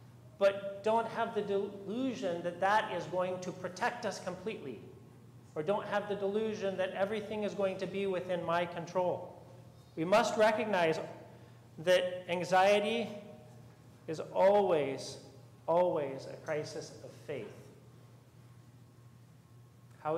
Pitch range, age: 130-195 Hz, 40-59